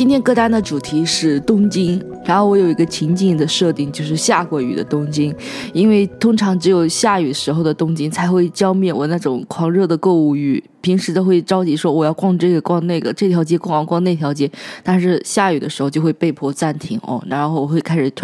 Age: 20-39